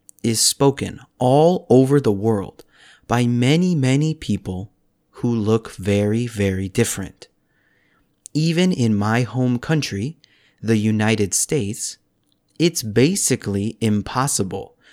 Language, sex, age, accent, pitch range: Korean, male, 40-59, American, 105-140 Hz